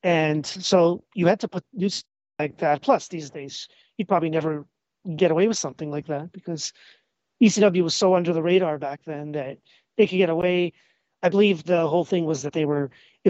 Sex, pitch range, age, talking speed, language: male, 160-205 Hz, 30-49, 205 wpm, English